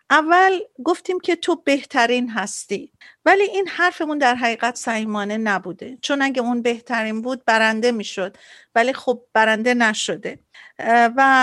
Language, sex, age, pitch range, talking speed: Persian, female, 50-69, 230-280 Hz, 135 wpm